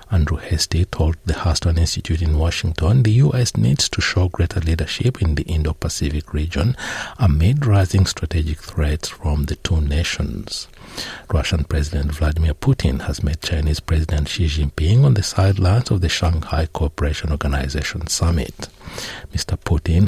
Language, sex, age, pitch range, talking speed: English, male, 60-79, 80-115 Hz, 145 wpm